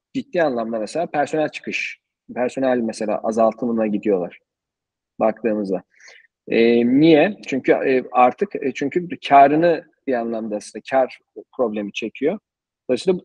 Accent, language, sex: native, Turkish, male